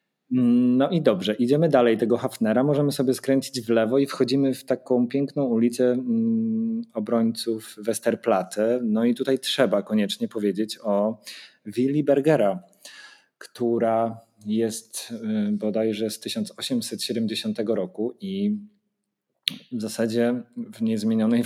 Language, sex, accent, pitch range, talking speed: Polish, male, native, 105-140 Hz, 110 wpm